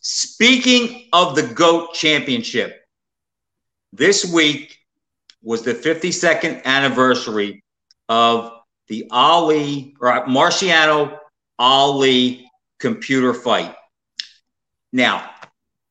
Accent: American